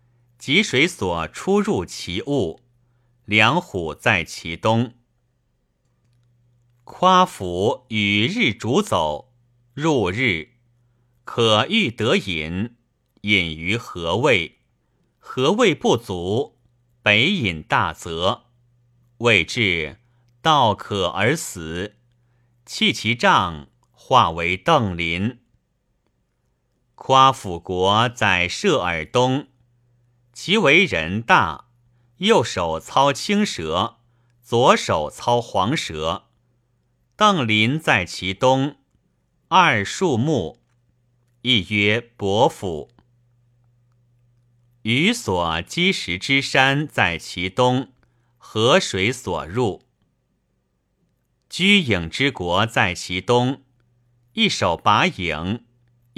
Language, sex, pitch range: Chinese, male, 105-120 Hz